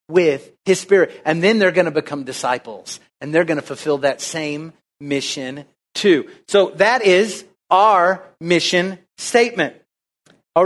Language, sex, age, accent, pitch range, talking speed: English, male, 40-59, American, 155-210 Hz, 145 wpm